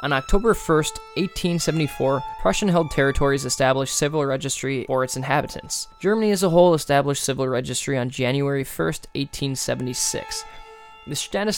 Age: 20-39